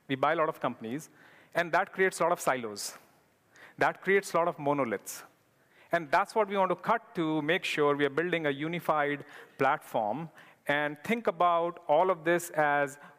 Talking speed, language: 190 wpm, English